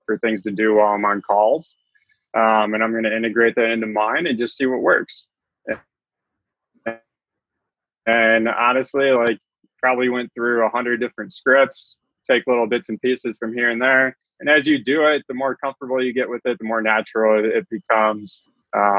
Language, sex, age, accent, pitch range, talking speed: English, male, 20-39, American, 105-125 Hz, 185 wpm